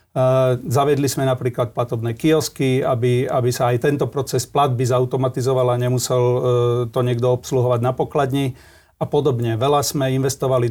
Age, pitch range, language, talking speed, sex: 40-59, 125-140 Hz, Slovak, 140 wpm, male